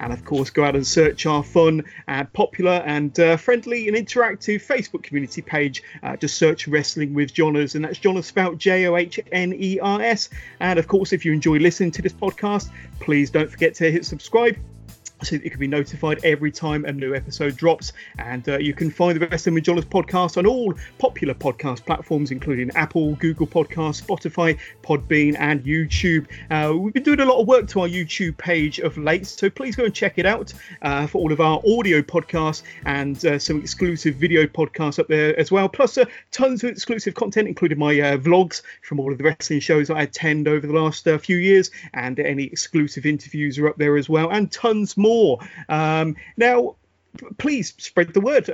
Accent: British